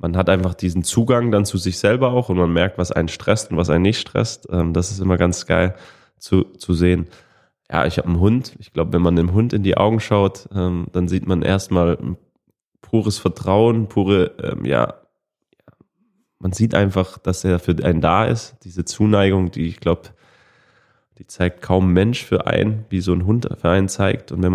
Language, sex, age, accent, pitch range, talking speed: German, male, 20-39, German, 90-100 Hz, 200 wpm